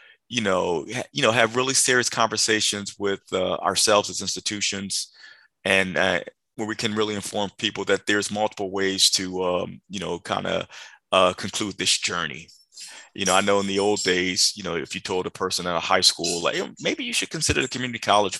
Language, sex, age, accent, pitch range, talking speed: English, male, 30-49, American, 95-110 Hz, 200 wpm